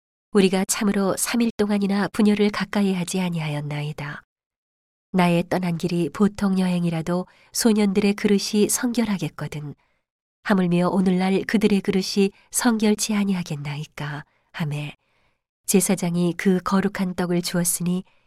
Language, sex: Korean, female